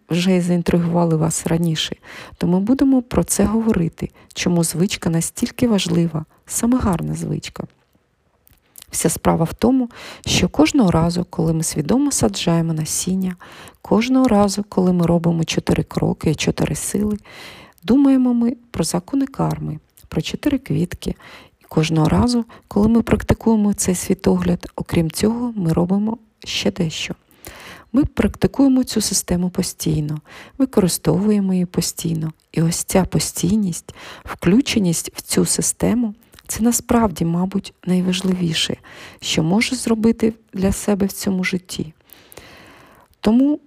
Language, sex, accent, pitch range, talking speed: Ukrainian, female, native, 165-225 Hz, 125 wpm